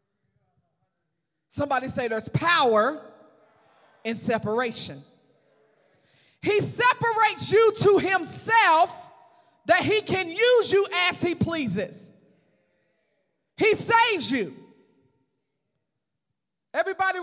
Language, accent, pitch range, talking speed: English, American, 260-435 Hz, 80 wpm